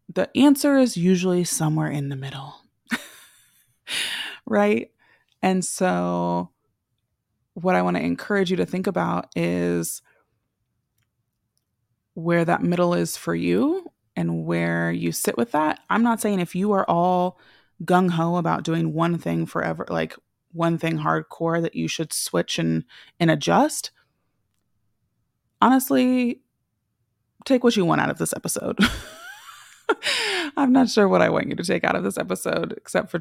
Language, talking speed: English, 145 wpm